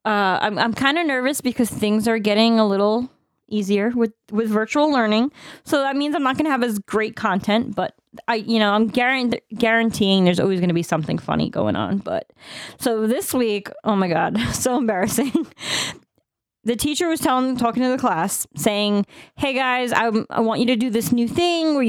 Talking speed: 200 wpm